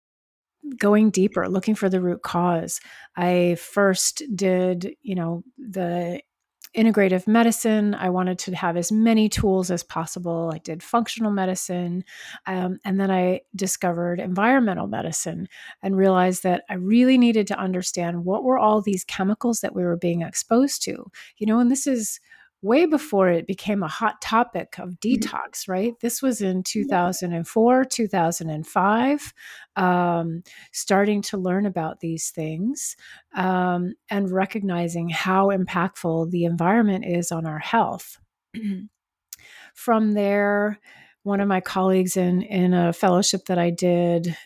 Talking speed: 140 wpm